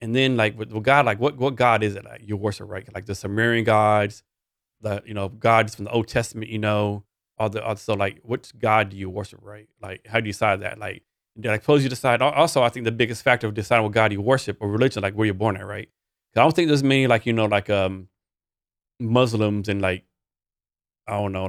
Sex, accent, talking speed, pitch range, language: male, American, 250 wpm, 105-125 Hz, English